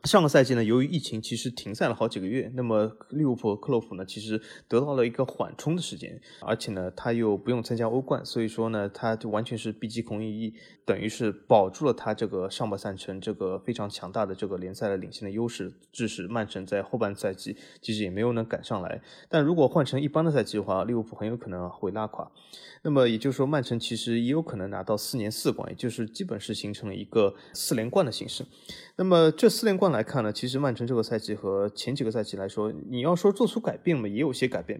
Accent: native